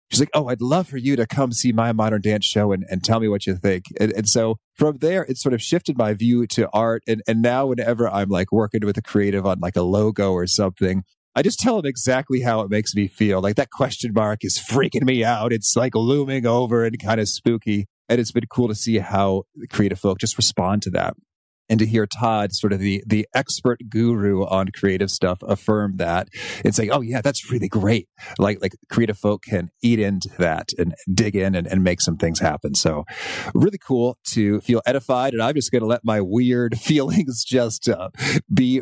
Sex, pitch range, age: male, 95-120 Hz, 30-49